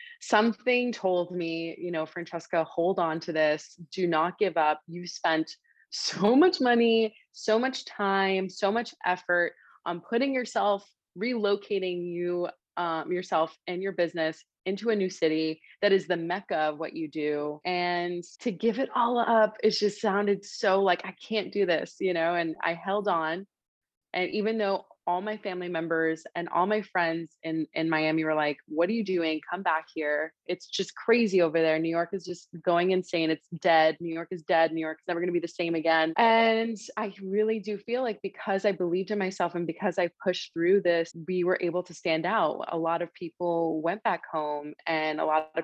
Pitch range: 165-200 Hz